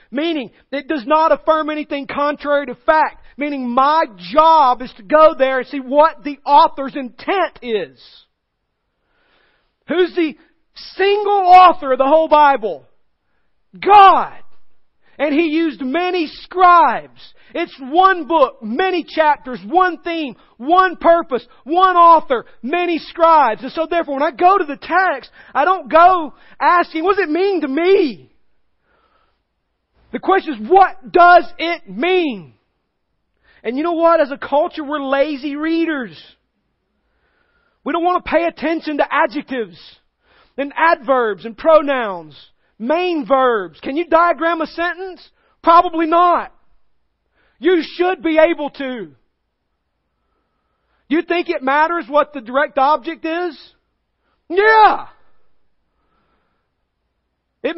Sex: male